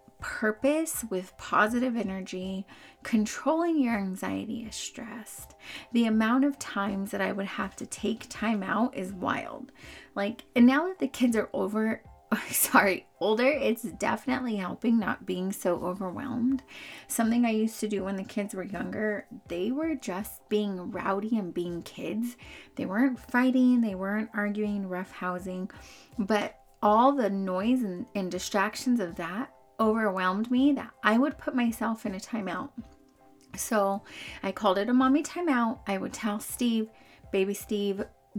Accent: American